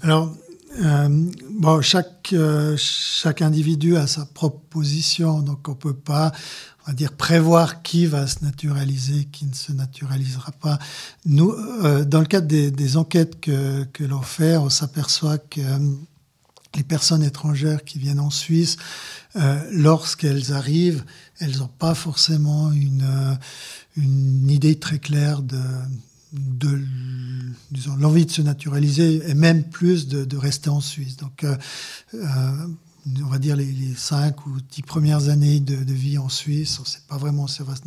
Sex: male